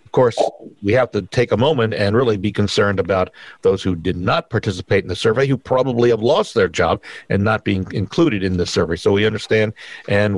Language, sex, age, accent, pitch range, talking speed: English, male, 50-69, American, 110-145 Hz, 220 wpm